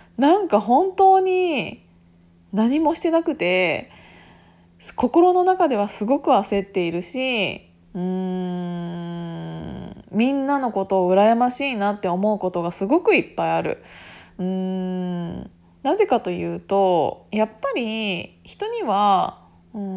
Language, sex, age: Japanese, female, 20-39